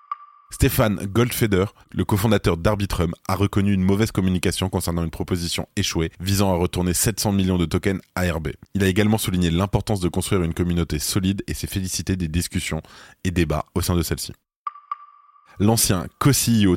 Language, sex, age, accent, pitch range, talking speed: French, male, 20-39, French, 85-105 Hz, 160 wpm